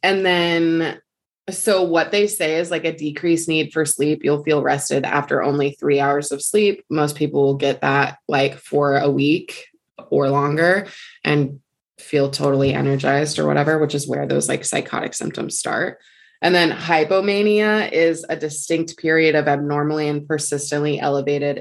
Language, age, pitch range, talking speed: English, 20-39, 140-170 Hz, 165 wpm